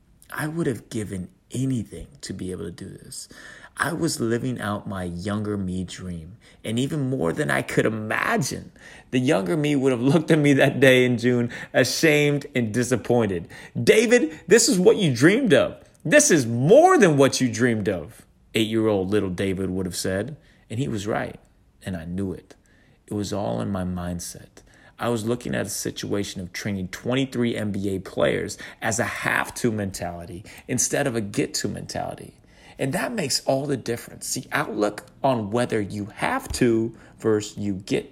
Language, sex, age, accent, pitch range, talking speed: English, male, 30-49, American, 95-130 Hz, 175 wpm